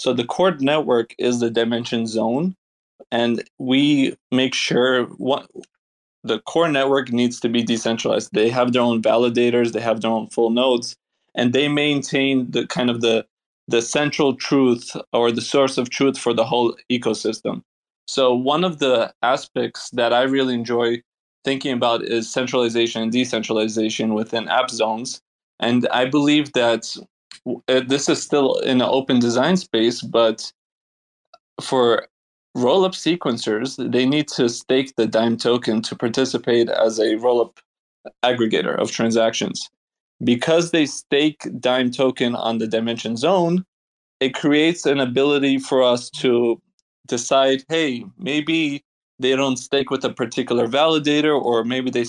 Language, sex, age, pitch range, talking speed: English, male, 20-39, 120-140 Hz, 145 wpm